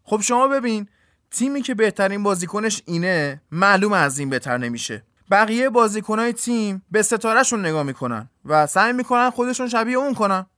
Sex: male